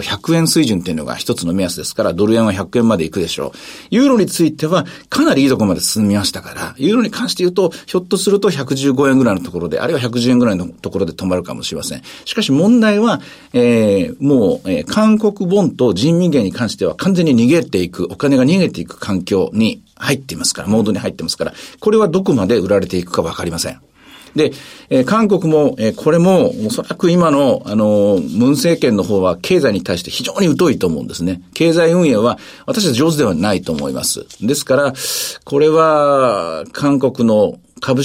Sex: male